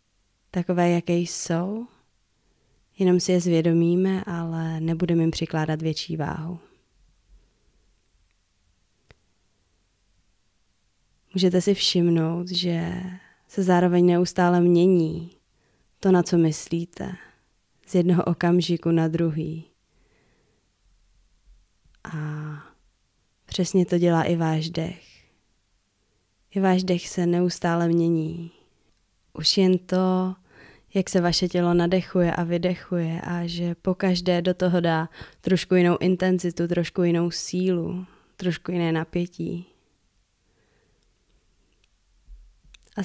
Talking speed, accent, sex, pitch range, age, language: 95 wpm, native, female, 155-180 Hz, 20-39, Czech